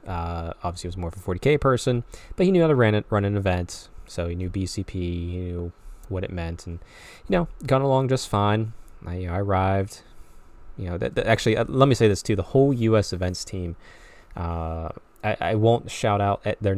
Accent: American